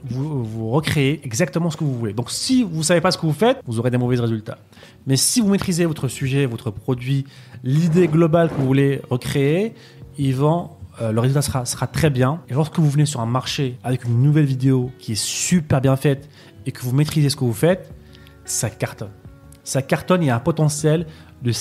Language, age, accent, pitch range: French, 30-49, French, 125-165 Hz